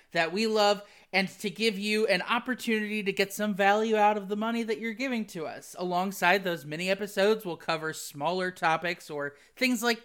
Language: English